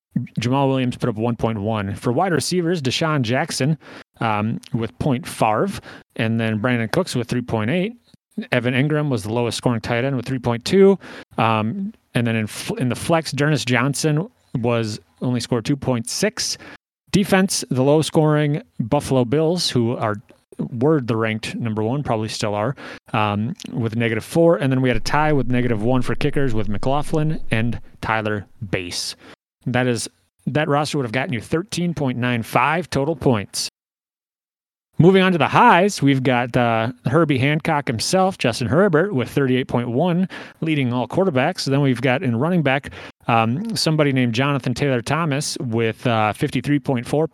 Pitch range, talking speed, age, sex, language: 120-155 Hz, 155 wpm, 30-49, male, English